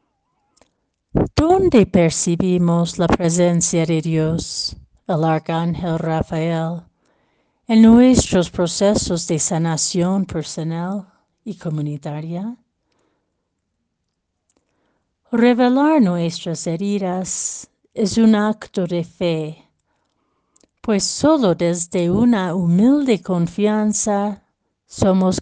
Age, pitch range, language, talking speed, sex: 60-79, 165-200 Hz, Spanish, 75 wpm, female